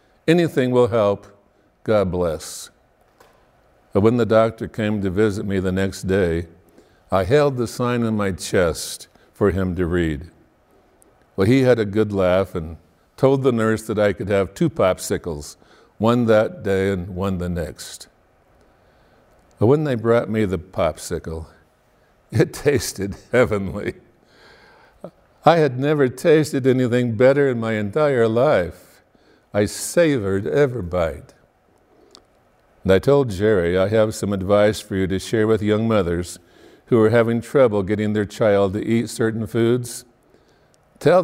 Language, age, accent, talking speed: English, 60-79, American, 145 wpm